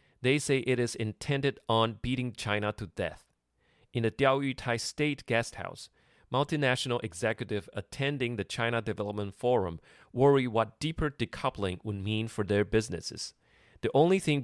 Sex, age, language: male, 30-49, Chinese